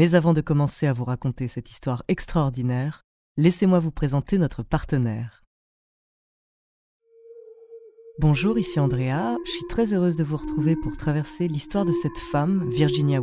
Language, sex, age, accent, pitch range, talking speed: French, female, 30-49, French, 145-200 Hz, 145 wpm